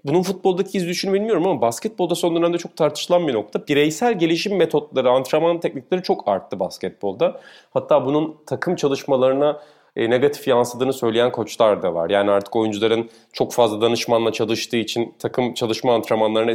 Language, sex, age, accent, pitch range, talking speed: Turkish, male, 30-49, native, 115-155 Hz, 150 wpm